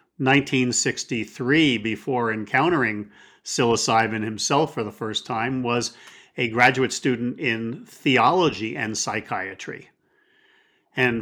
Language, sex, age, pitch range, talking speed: English, male, 50-69, 115-140 Hz, 95 wpm